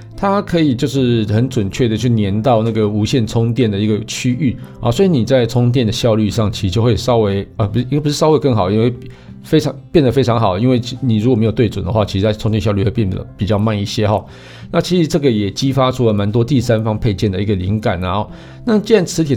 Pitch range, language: 105-130 Hz, Chinese